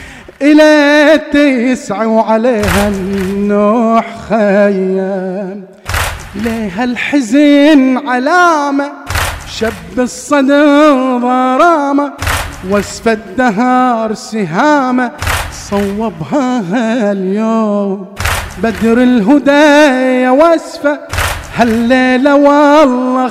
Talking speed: 55 wpm